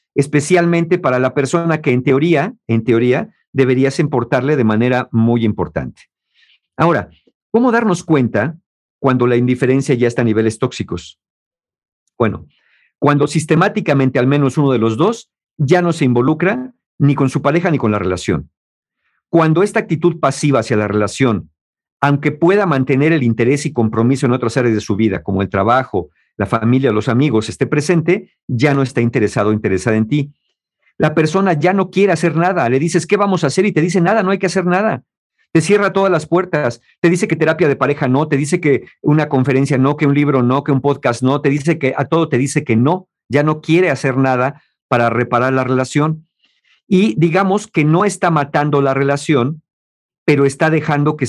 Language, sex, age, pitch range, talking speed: Spanish, male, 50-69, 125-165 Hz, 190 wpm